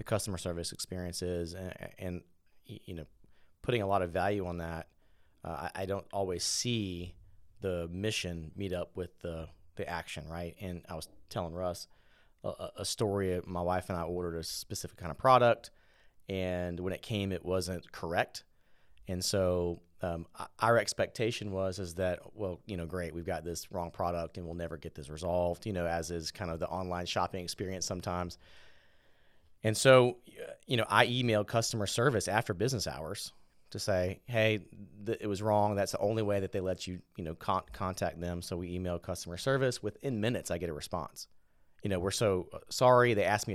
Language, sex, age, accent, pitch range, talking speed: English, male, 30-49, American, 90-110 Hz, 190 wpm